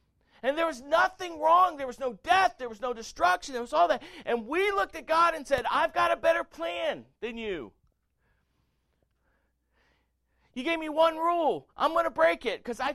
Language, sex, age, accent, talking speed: English, male, 50-69, American, 200 wpm